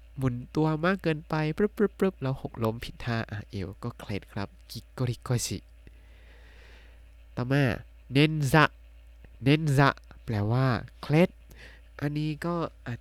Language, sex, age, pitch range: Thai, male, 20-39, 100-135 Hz